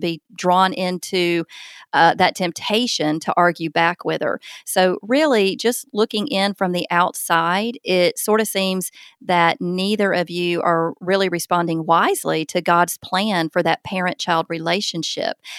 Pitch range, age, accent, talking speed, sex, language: 175-225 Hz, 30-49, American, 145 wpm, female, English